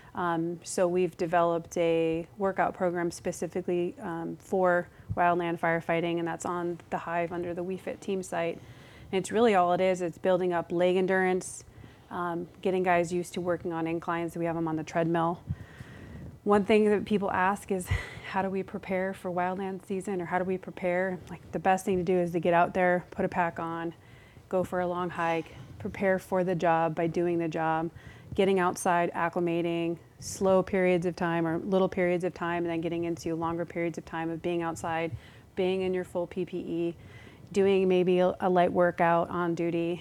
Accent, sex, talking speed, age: American, female, 190 wpm, 30-49